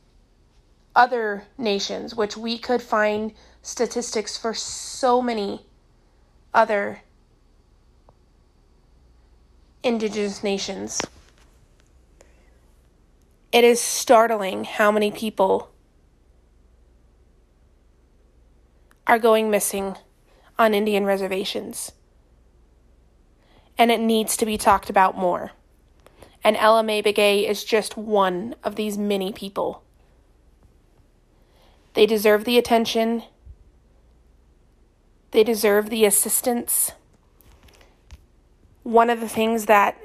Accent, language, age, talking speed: American, English, 30-49, 85 wpm